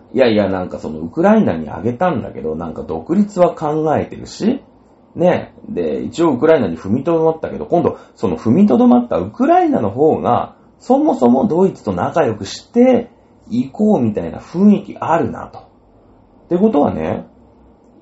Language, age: Japanese, 40-59